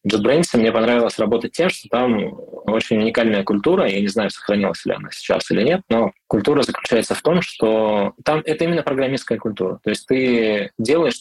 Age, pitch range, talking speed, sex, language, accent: 20-39, 100-120 Hz, 180 wpm, male, Russian, native